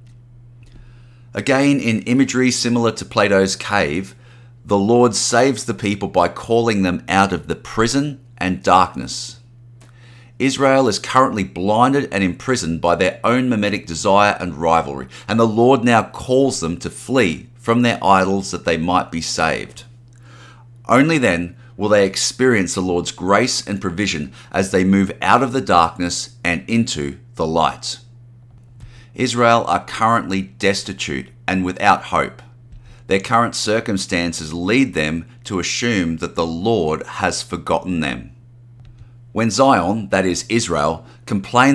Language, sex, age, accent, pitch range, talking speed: English, male, 30-49, Australian, 95-120 Hz, 140 wpm